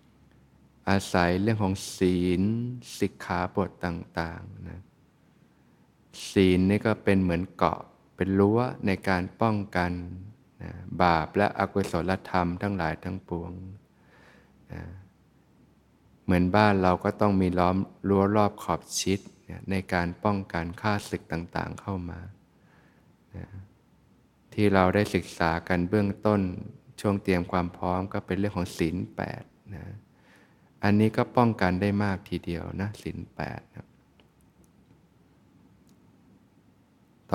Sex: male